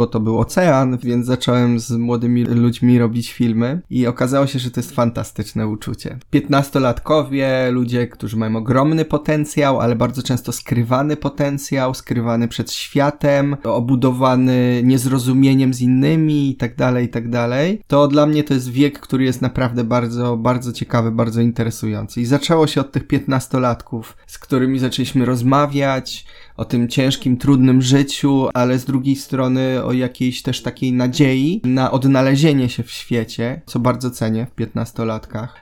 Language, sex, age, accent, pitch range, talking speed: Polish, male, 20-39, native, 120-140 Hz, 155 wpm